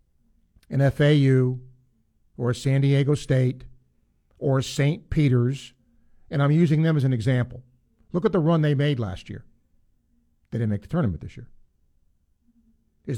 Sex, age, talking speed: male, 50-69, 150 wpm